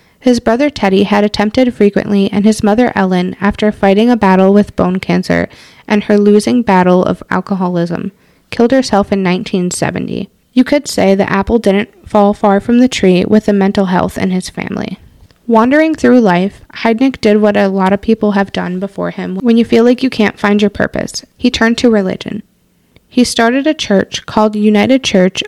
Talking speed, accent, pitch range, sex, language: 185 wpm, American, 195-230 Hz, female, English